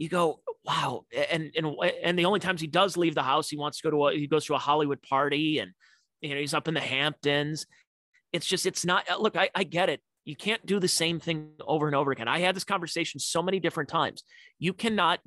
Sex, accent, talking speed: male, American, 250 wpm